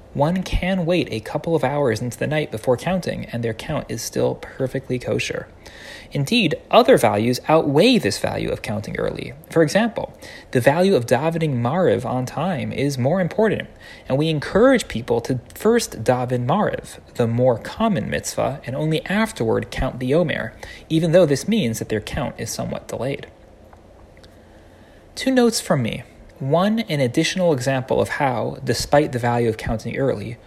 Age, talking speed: 30-49, 165 wpm